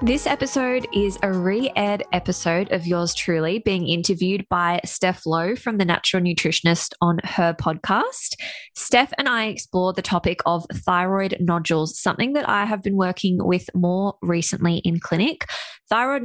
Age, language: 20-39, English